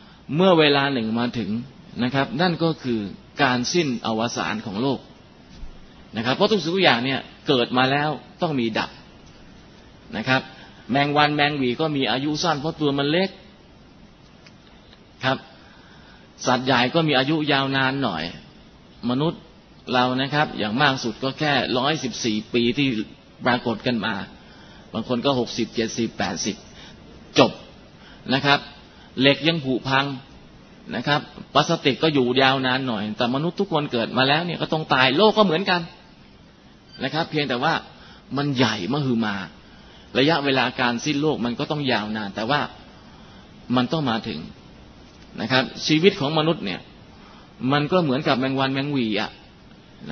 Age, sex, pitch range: 20-39, male, 125-155 Hz